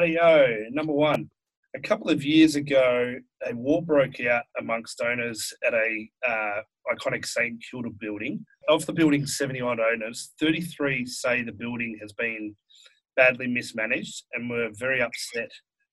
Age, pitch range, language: 30-49, 120-150 Hz, English